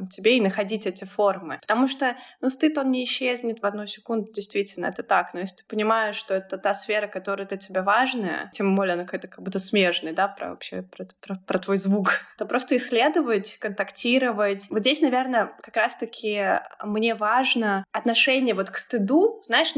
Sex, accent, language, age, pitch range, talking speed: female, native, Russian, 20-39, 200-255 Hz, 185 wpm